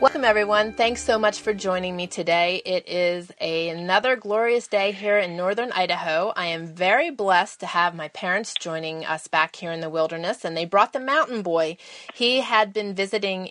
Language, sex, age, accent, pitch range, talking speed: English, female, 30-49, American, 170-215 Hz, 190 wpm